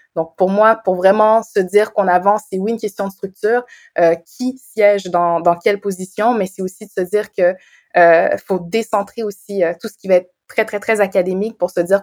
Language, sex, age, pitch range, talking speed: French, female, 20-39, 175-200 Hz, 230 wpm